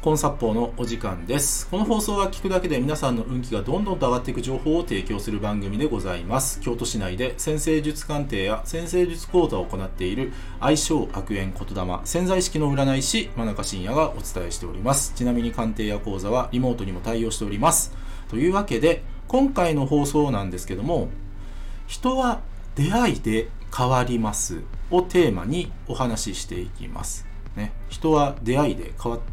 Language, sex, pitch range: Japanese, male, 100-160 Hz